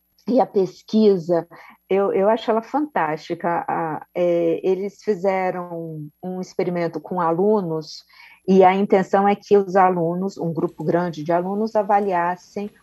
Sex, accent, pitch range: female, Brazilian, 175-235 Hz